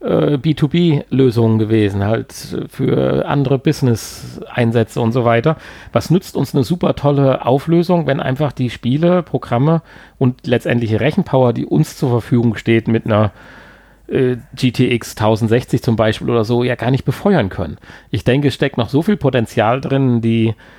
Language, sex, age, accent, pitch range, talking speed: German, male, 40-59, German, 115-135 Hz, 155 wpm